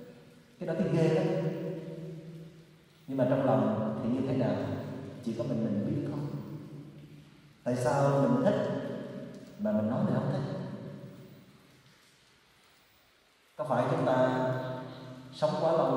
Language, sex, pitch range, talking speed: Vietnamese, male, 120-150 Hz, 130 wpm